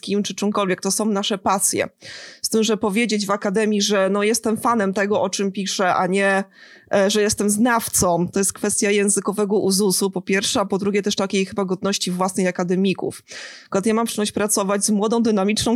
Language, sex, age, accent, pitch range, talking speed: Polish, female, 20-39, native, 185-210 Hz, 195 wpm